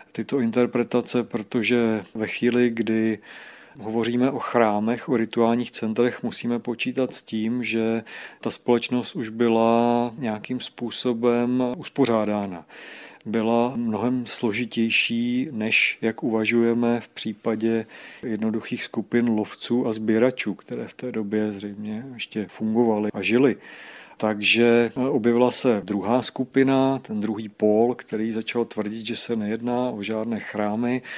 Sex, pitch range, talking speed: male, 110-125 Hz, 120 wpm